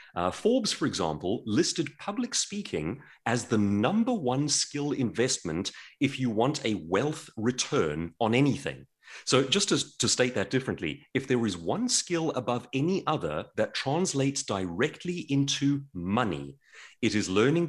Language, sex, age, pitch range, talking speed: English, male, 30-49, 100-165 Hz, 150 wpm